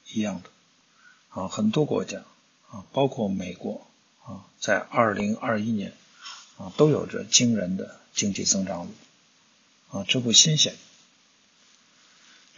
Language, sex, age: Chinese, male, 50-69